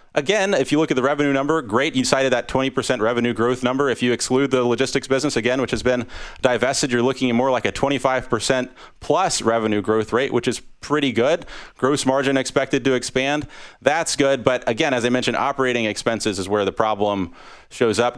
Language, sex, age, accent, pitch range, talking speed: English, male, 30-49, American, 115-135 Hz, 205 wpm